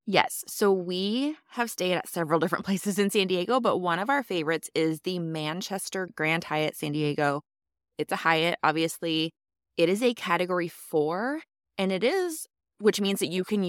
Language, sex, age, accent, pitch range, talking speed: English, female, 20-39, American, 155-195 Hz, 180 wpm